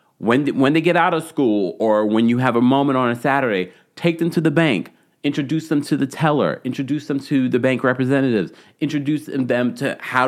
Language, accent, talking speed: English, American, 215 wpm